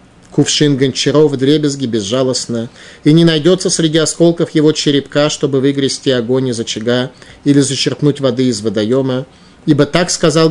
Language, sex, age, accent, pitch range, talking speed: Russian, male, 30-49, native, 120-150 Hz, 145 wpm